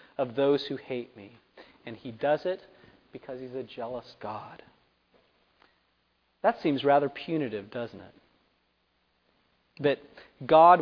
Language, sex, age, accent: English, male, 40-59, American